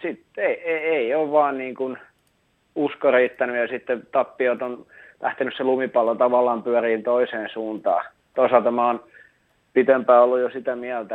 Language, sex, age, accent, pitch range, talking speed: Finnish, male, 30-49, native, 115-130 Hz, 130 wpm